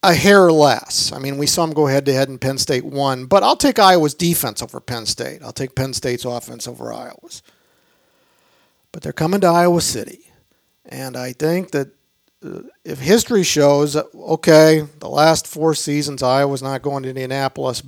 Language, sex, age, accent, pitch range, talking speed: English, male, 50-69, American, 130-160 Hz, 175 wpm